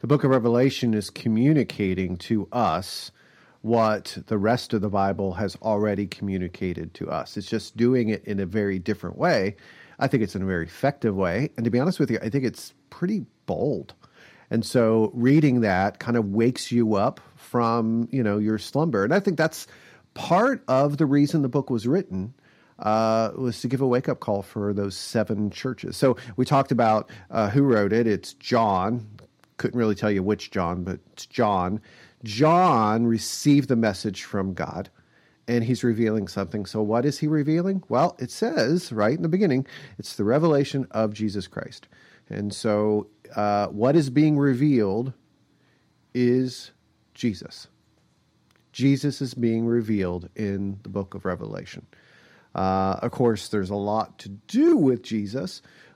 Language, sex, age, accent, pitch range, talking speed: English, male, 40-59, American, 100-130 Hz, 170 wpm